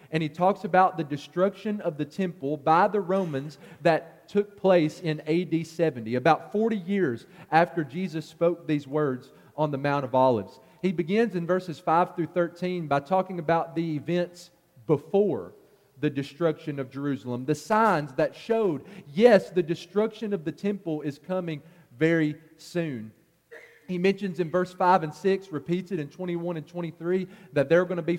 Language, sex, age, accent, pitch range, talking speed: English, male, 40-59, American, 155-185 Hz, 170 wpm